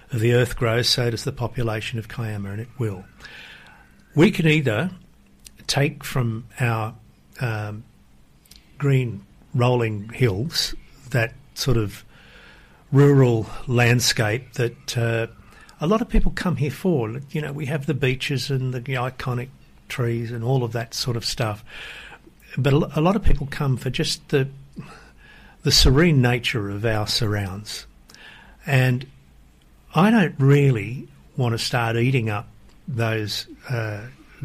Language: English